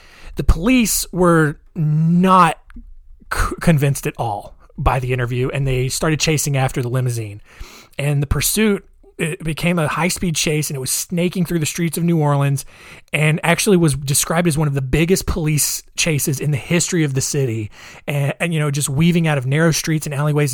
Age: 30-49